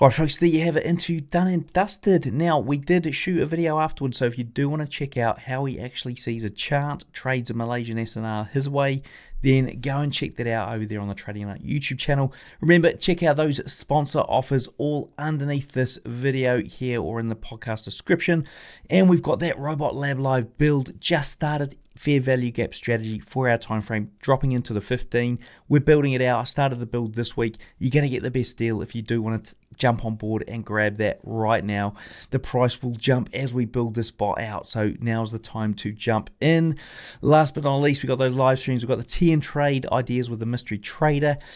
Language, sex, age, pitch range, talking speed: English, male, 20-39, 110-145 Hz, 225 wpm